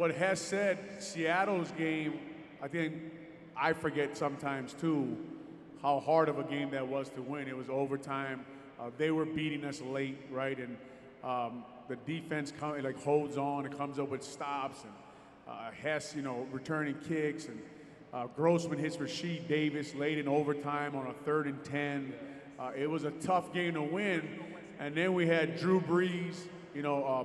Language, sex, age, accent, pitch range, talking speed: English, male, 30-49, American, 145-170 Hz, 180 wpm